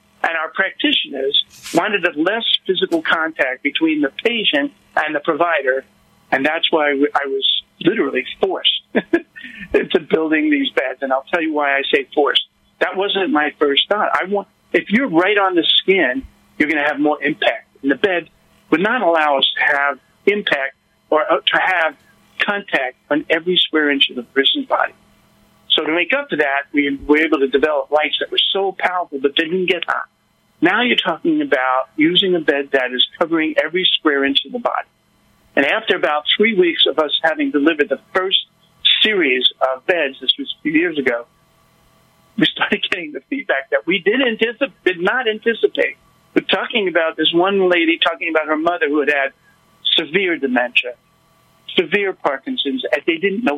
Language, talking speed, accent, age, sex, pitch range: English, 180 wpm, American, 50-69, male, 145-230 Hz